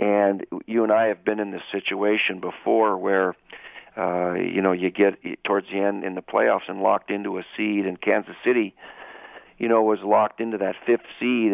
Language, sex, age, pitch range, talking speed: English, male, 50-69, 105-120 Hz, 200 wpm